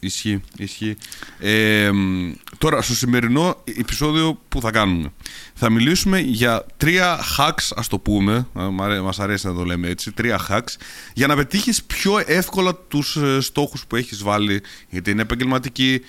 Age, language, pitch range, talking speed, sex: 30-49, Greek, 110-155 Hz, 140 wpm, male